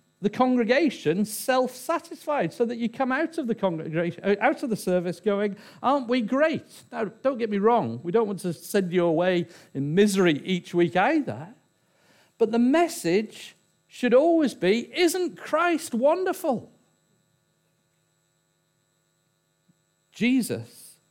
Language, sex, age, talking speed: English, male, 50-69, 135 wpm